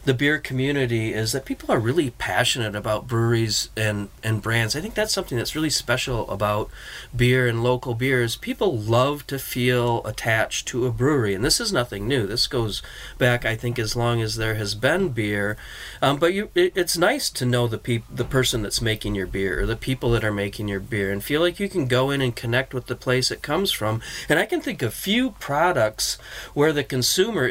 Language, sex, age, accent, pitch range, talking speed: English, male, 40-59, American, 110-135 Hz, 210 wpm